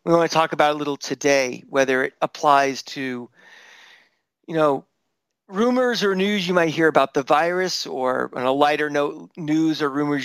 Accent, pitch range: American, 145-185 Hz